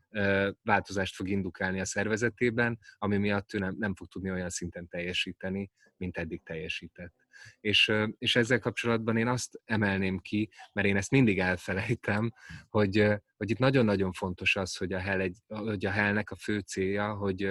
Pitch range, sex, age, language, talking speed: 90-105 Hz, male, 30-49, Hungarian, 160 wpm